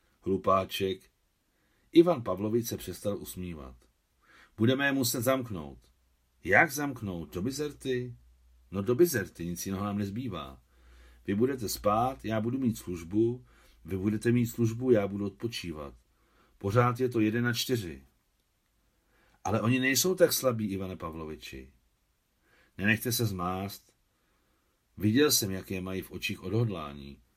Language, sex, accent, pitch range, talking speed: Czech, male, native, 85-120 Hz, 125 wpm